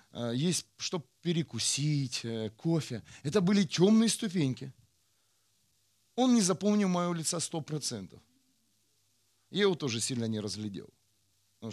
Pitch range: 105-155 Hz